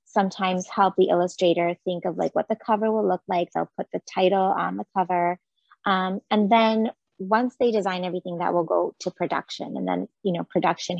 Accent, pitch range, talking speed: American, 185-235 Hz, 200 wpm